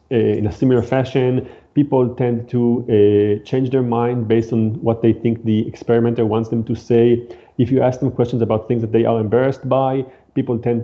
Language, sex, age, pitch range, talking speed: English, male, 30-49, 115-140 Hz, 200 wpm